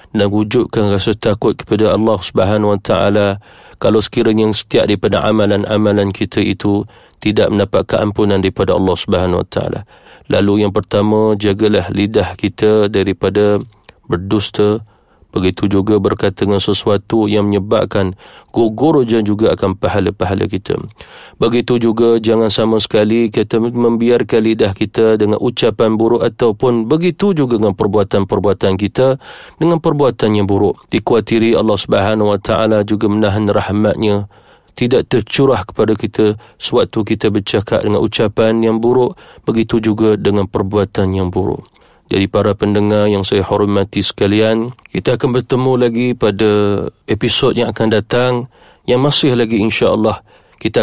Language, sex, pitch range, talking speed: Malay, male, 105-115 Hz, 130 wpm